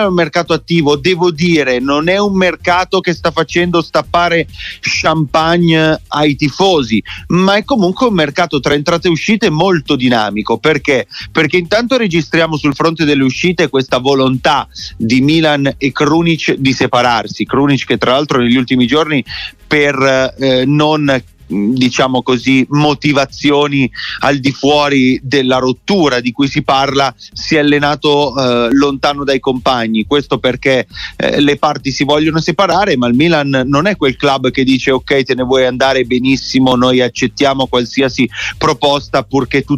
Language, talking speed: Italian, 155 wpm